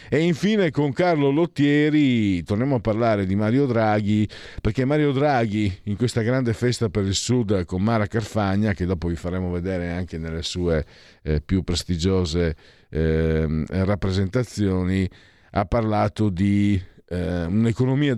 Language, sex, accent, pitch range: Italian, male, native, 95-115 Hz